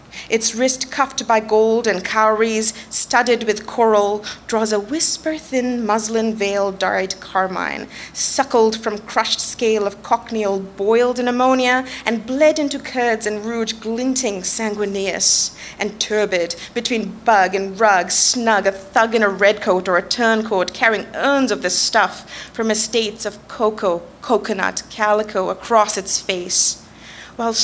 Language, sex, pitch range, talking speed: English, female, 195-230 Hz, 145 wpm